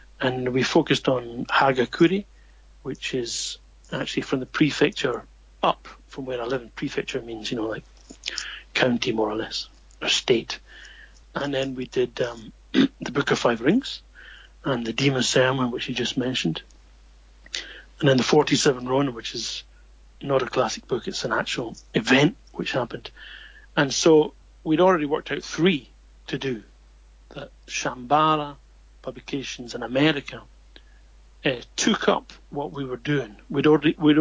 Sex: male